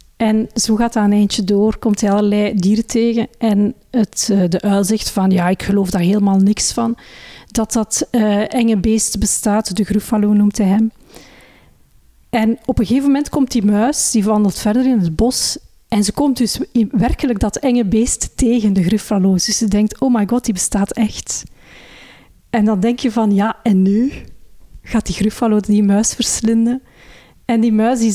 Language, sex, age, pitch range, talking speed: Dutch, female, 40-59, 205-240 Hz, 190 wpm